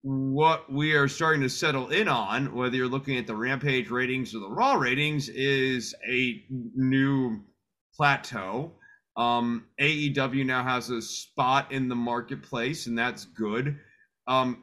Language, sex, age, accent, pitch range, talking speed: English, male, 30-49, American, 125-150 Hz, 150 wpm